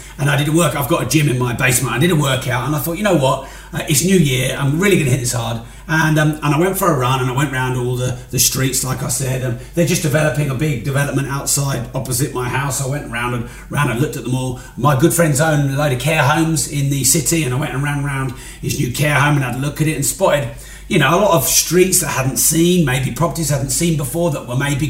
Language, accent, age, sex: English, British, 30-49, male